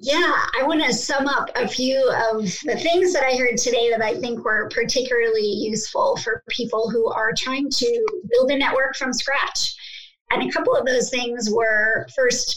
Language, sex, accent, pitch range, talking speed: English, male, American, 235-320 Hz, 190 wpm